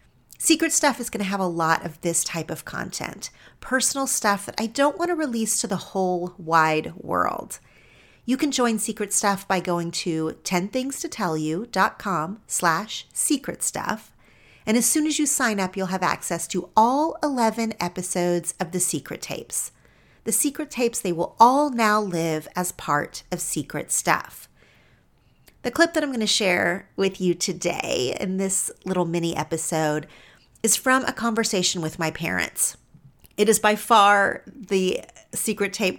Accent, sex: American, female